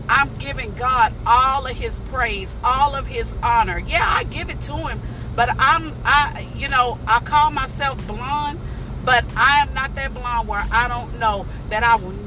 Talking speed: 190 wpm